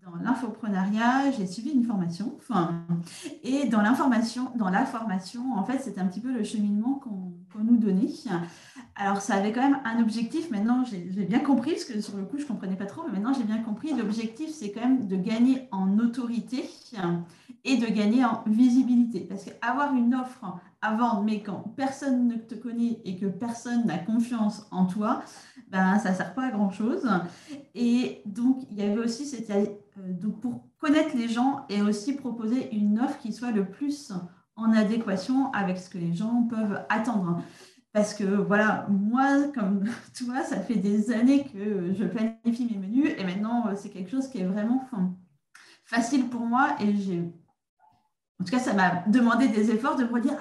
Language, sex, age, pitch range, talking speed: French, female, 30-49, 200-255 Hz, 190 wpm